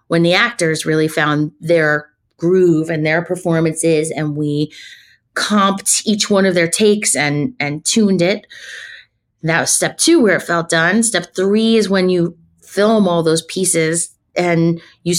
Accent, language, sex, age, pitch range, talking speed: American, English, female, 30-49, 165-215 Hz, 160 wpm